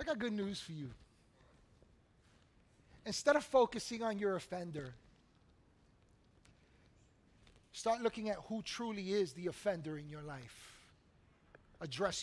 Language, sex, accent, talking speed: English, male, American, 120 wpm